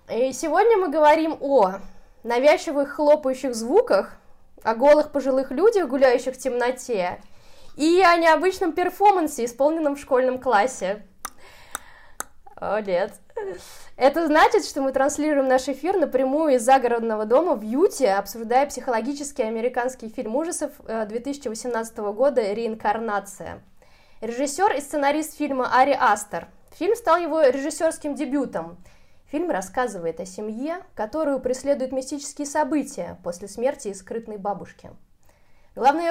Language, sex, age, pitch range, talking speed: Russian, female, 20-39, 240-310 Hz, 115 wpm